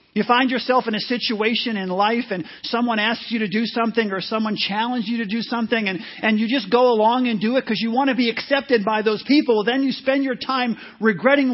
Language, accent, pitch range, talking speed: English, American, 200-260 Hz, 240 wpm